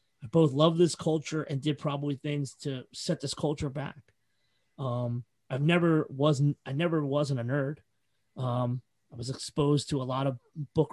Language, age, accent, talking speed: English, 30-49, American, 170 wpm